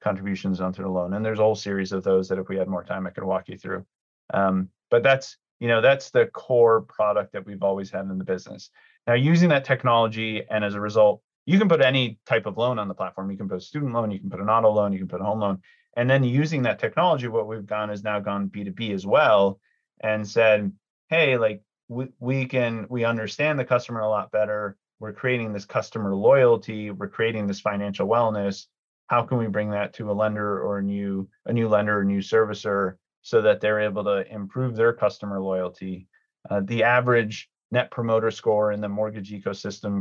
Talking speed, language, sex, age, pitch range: 220 wpm, English, male, 30-49, 95-115 Hz